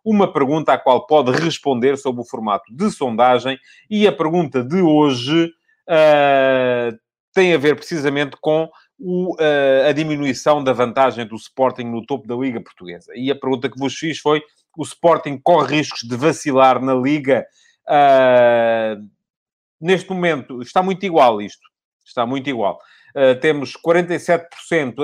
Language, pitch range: English, 125-155 Hz